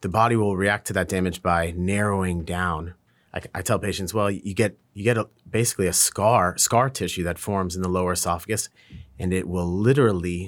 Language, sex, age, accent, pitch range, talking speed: English, male, 30-49, American, 95-115 Hz, 200 wpm